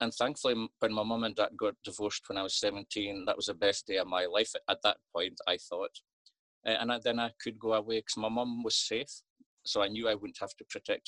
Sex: male